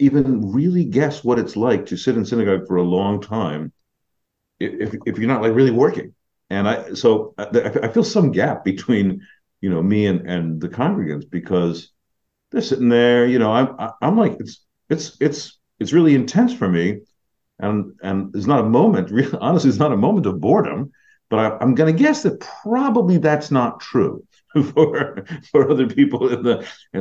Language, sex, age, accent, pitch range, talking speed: English, male, 50-69, American, 95-135 Hz, 180 wpm